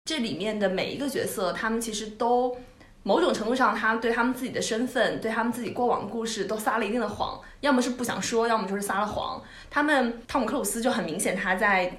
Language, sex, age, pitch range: Chinese, female, 20-39, 195-260 Hz